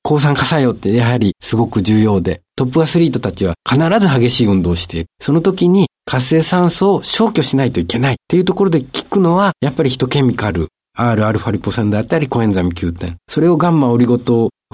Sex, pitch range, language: male, 95-150 Hz, Japanese